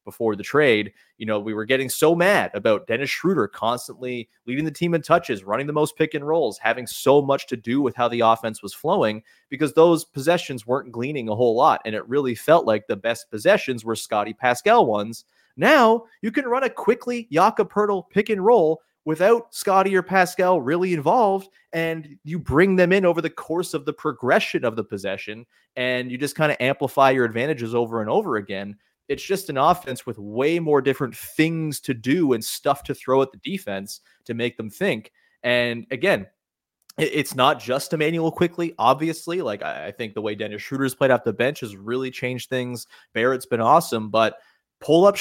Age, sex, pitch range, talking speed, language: 30-49, male, 120-175 Hz, 200 wpm, English